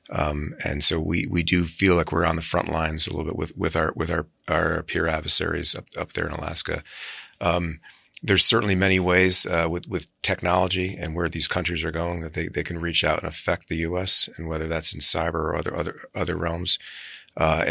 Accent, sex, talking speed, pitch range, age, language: American, male, 220 wpm, 80-90 Hz, 40-59, English